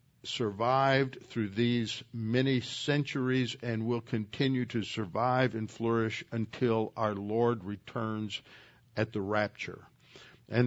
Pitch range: 110-130 Hz